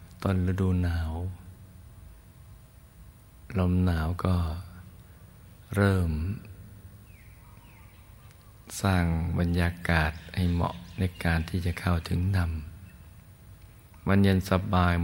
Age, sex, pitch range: 20-39, male, 90-105 Hz